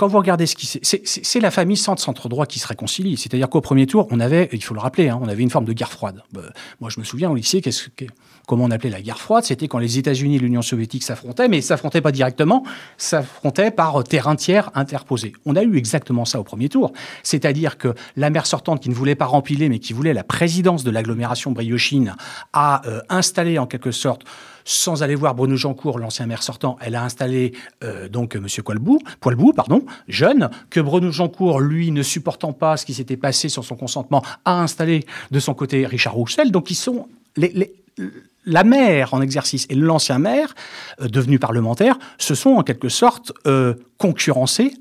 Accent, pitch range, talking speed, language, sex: French, 125-175 Hz, 215 wpm, French, male